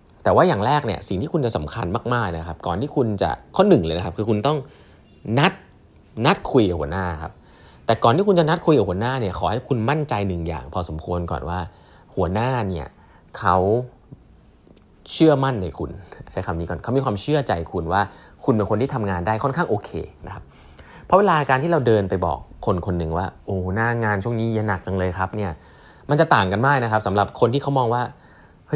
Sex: male